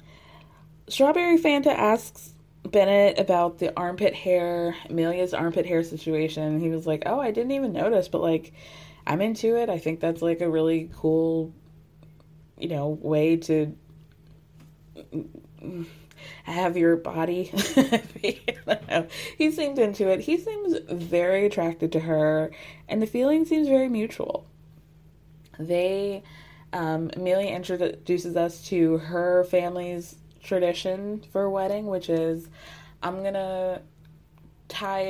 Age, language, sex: 20-39, English, female